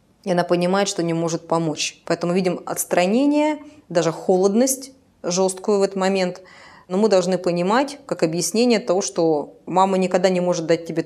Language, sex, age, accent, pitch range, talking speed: Russian, female, 20-39, native, 165-195 Hz, 165 wpm